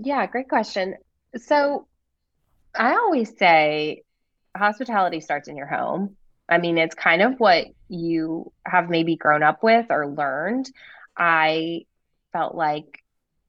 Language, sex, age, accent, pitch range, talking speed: English, female, 20-39, American, 160-205 Hz, 130 wpm